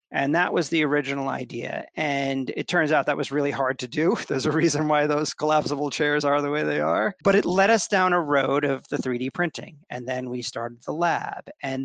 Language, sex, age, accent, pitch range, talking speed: English, male, 40-59, American, 130-150 Hz, 235 wpm